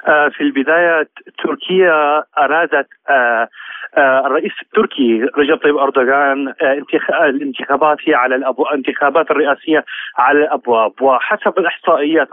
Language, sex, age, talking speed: Arabic, male, 40-59, 90 wpm